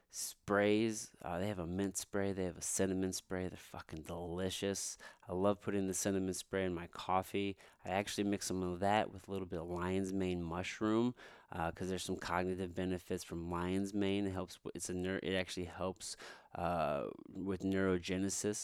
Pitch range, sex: 90-100 Hz, male